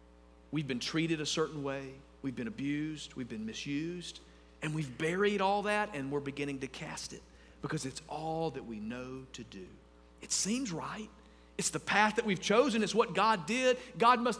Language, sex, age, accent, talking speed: English, male, 40-59, American, 190 wpm